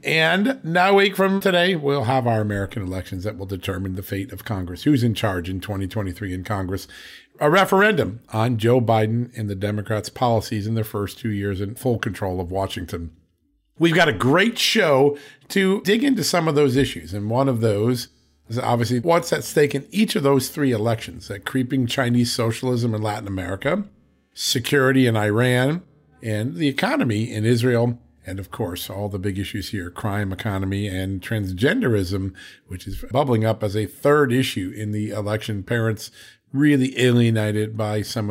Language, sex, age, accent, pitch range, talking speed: English, male, 50-69, American, 105-145 Hz, 180 wpm